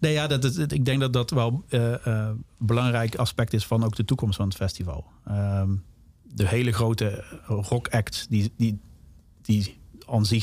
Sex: male